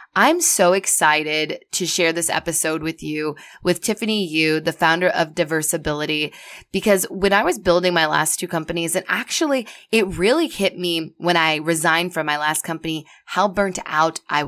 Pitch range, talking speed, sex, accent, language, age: 160-210 Hz, 175 wpm, female, American, English, 20-39